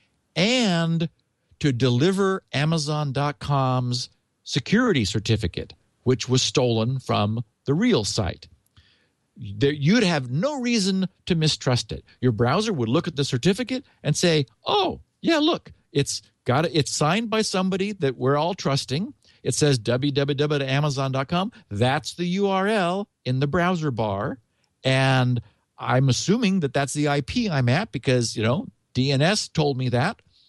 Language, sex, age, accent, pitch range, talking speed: English, male, 50-69, American, 125-175 Hz, 140 wpm